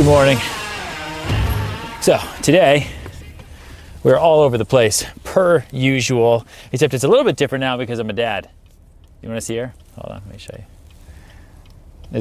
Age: 30-49